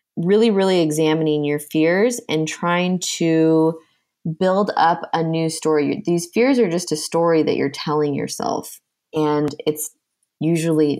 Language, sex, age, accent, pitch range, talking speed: English, female, 20-39, American, 150-180 Hz, 140 wpm